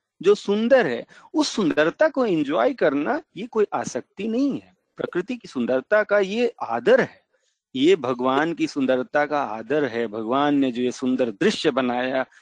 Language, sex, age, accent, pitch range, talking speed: Hindi, male, 40-59, native, 130-215 Hz, 165 wpm